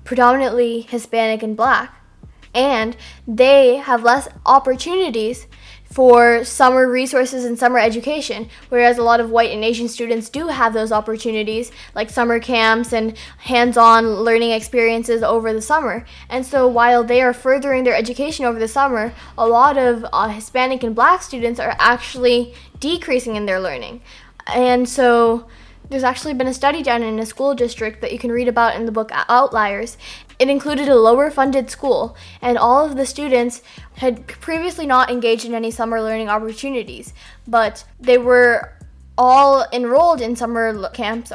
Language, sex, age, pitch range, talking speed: English, female, 10-29, 225-255 Hz, 165 wpm